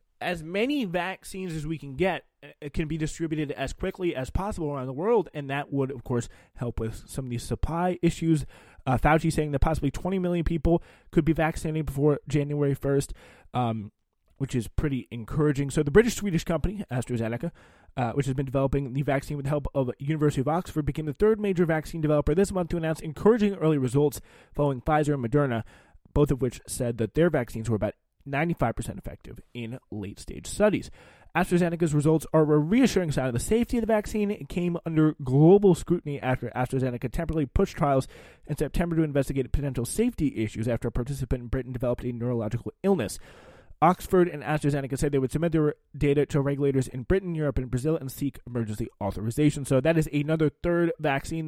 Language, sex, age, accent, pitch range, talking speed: English, male, 20-39, American, 130-165 Hz, 190 wpm